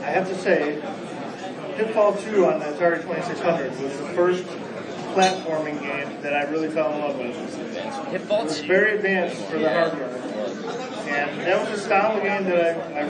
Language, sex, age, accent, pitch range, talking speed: English, male, 30-49, American, 165-190 Hz, 180 wpm